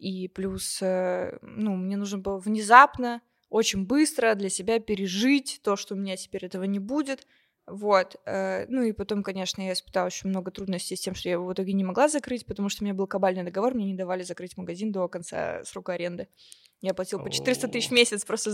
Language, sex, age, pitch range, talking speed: Russian, female, 20-39, 195-245 Hz, 205 wpm